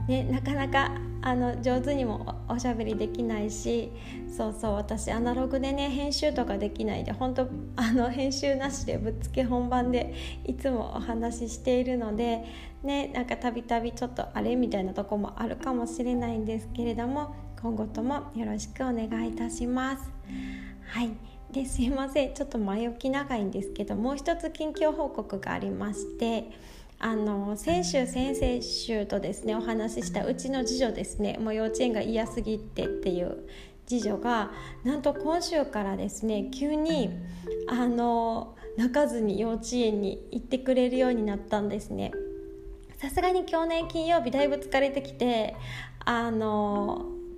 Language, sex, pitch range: Japanese, female, 200-260 Hz